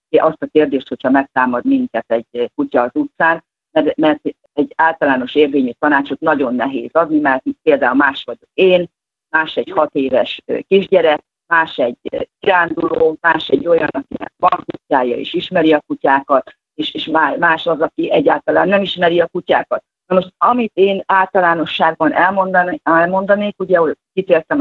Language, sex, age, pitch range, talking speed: Hungarian, female, 40-59, 150-200 Hz, 145 wpm